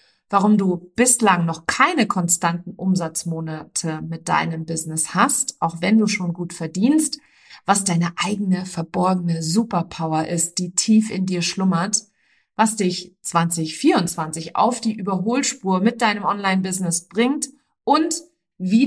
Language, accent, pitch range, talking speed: German, German, 175-235 Hz, 125 wpm